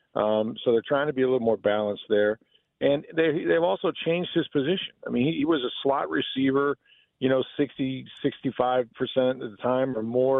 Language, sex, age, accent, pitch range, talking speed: English, male, 50-69, American, 125-145 Hz, 200 wpm